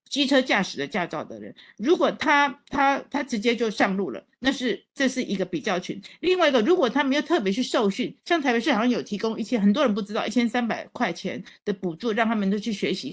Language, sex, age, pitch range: Chinese, female, 50-69, 195-255 Hz